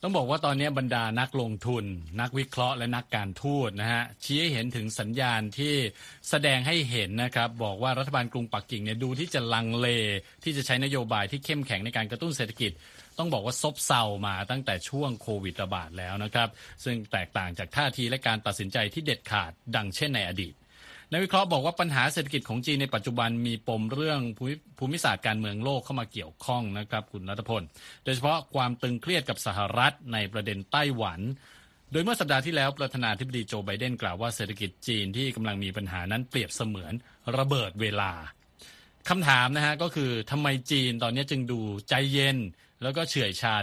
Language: Thai